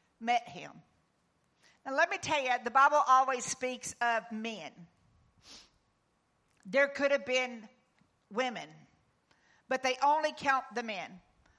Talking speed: 125 wpm